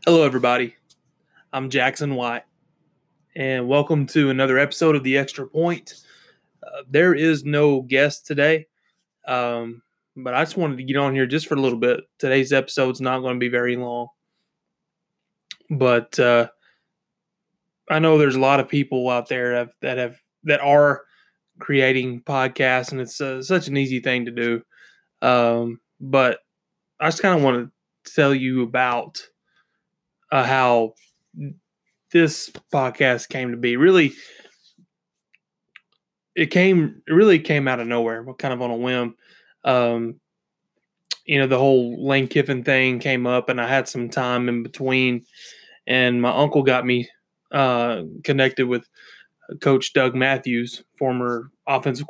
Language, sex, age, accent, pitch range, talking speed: English, male, 20-39, American, 125-150 Hz, 150 wpm